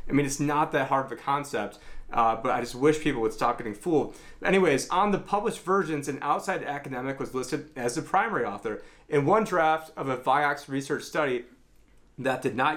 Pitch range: 125-150 Hz